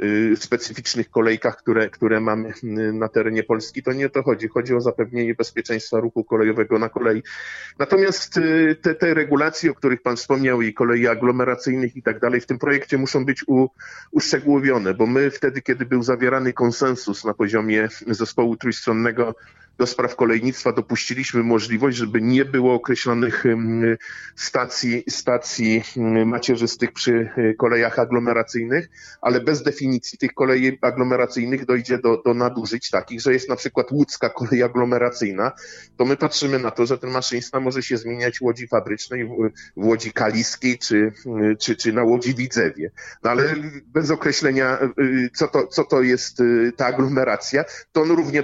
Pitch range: 115-130 Hz